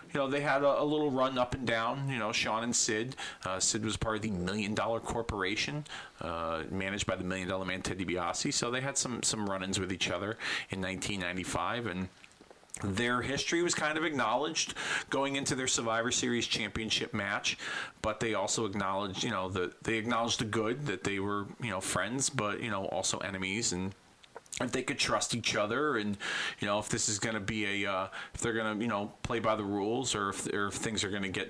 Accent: American